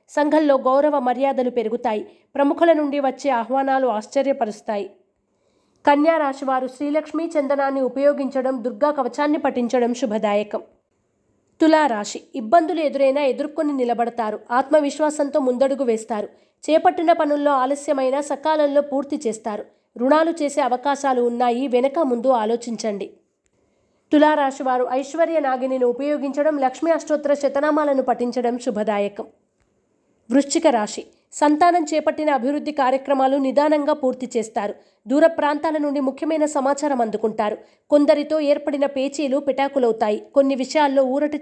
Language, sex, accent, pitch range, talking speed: Telugu, female, native, 250-295 Hz, 100 wpm